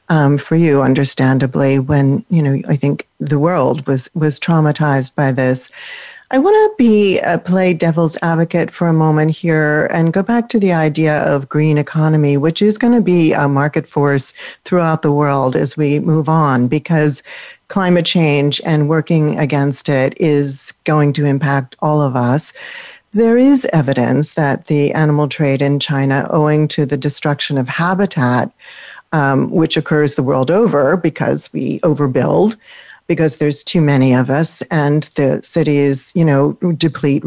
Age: 40-59